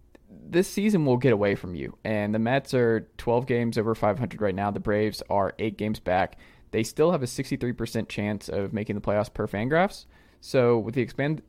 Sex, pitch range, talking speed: male, 105-130 Hz, 215 wpm